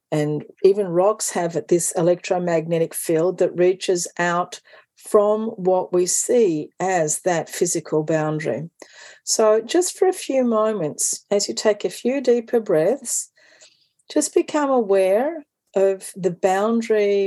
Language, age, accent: English, 50-69, Australian